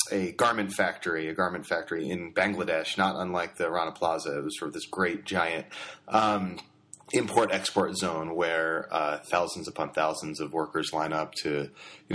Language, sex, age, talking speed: English, male, 30-49, 170 wpm